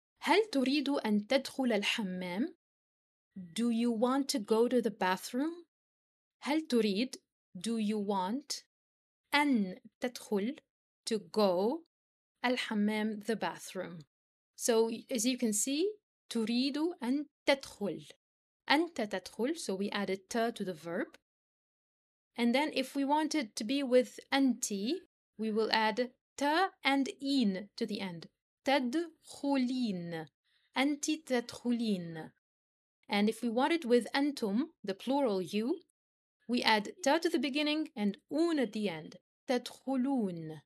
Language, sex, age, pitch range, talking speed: English, female, 20-39, 205-275 Hz, 125 wpm